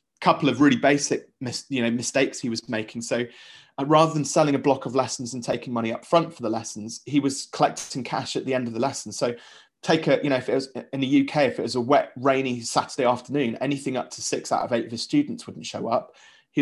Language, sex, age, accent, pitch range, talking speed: English, male, 30-49, British, 120-145 Hz, 255 wpm